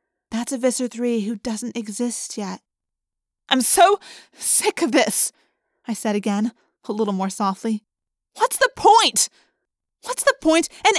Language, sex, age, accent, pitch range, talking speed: English, female, 30-49, American, 205-300 Hz, 145 wpm